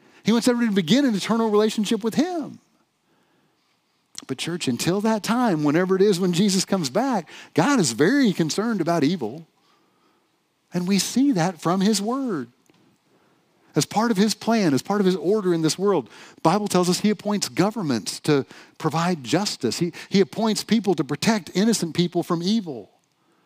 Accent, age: American, 40-59